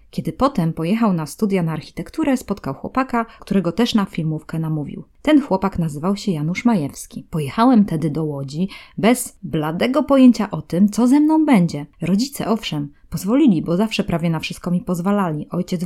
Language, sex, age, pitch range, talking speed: Polish, female, 20-39, 160-220 Hz, 165 wpm